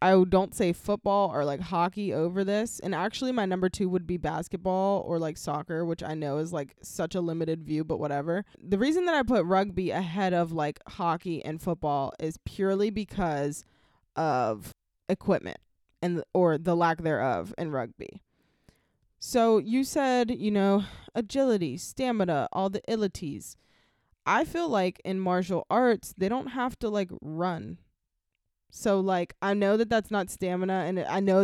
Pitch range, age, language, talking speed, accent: 160-200 Hz, 20-39, English, 170 wpm, American